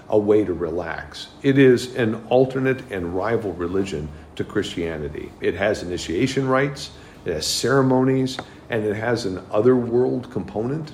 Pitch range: 95-140 Hz